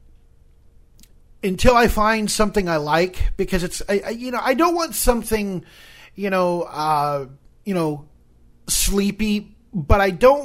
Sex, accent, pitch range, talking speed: male, American, 135-225 Hz, 130 wpm